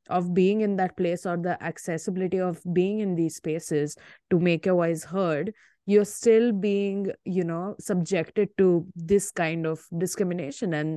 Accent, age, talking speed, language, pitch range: Indian, 20-39, 165 wpm, English, 170-200 Hz